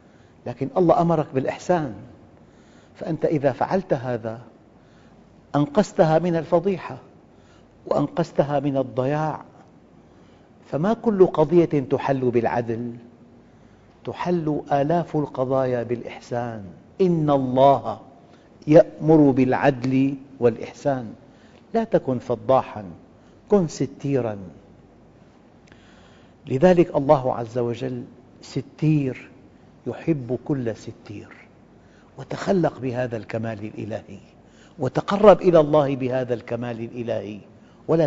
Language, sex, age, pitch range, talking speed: Arabic, male, 50-69, 120-150 Hz, 80 wpm